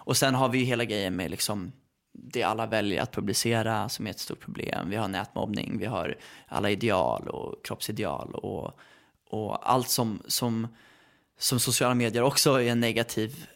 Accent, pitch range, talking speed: Swedish, 115-135 Hz, 175 wpm